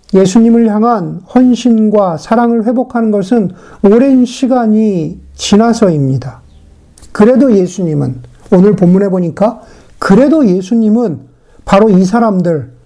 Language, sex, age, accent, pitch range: Korean, male, 50-69, native, 155-230 Hz